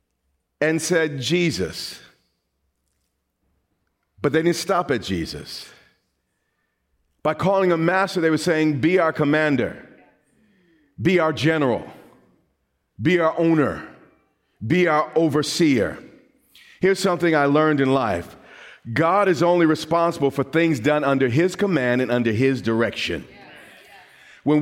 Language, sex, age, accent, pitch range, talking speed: English, male, 40-59, American, 135-180 Hz, 120 wpm